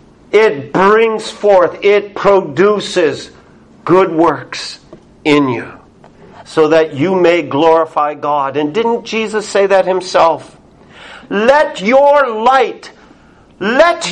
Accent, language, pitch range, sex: American, English, 140-210 Hz, male